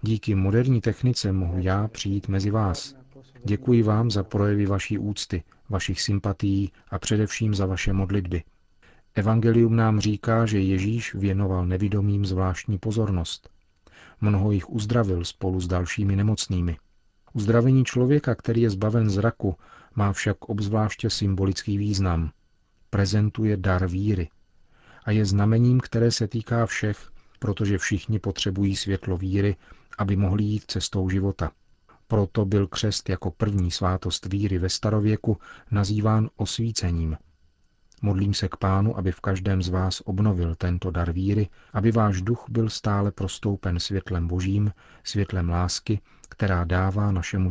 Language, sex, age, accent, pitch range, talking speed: Czech, male, 40-59, native, 95-110 Hz, 135 wpm